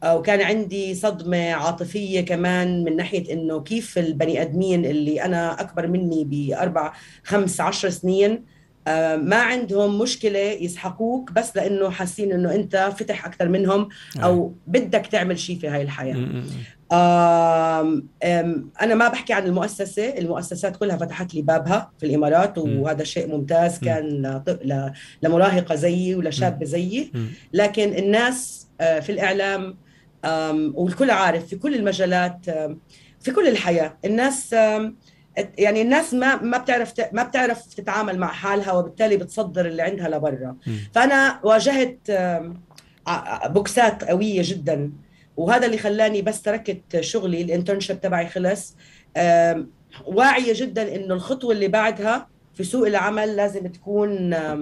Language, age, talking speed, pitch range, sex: Arabic, 30-49, 120 wpm, 165-210 Hz, female